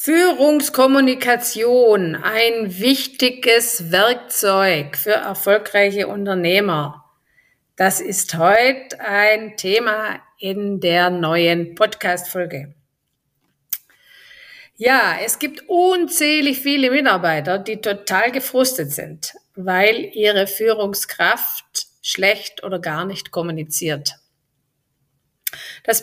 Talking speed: 80 wpm